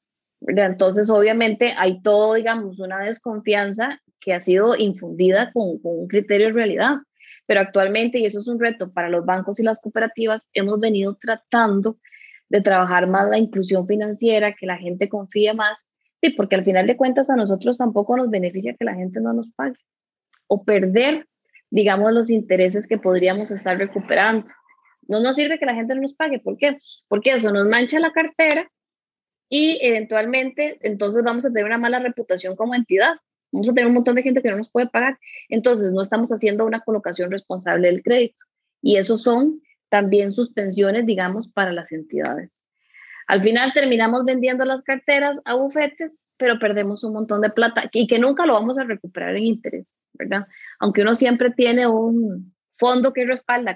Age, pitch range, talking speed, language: 20-39, 205-255 Hz, 180 wpm, Spanish